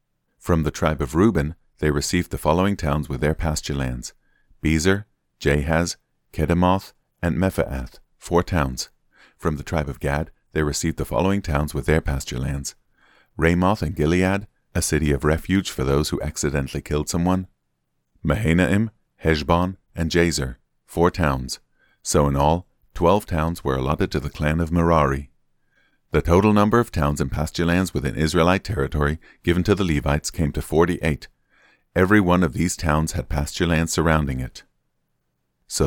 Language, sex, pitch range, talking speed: English, male, 70-90 Hz, 160 wpm